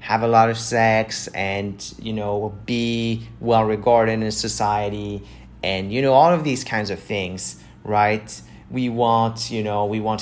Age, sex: 30-49, male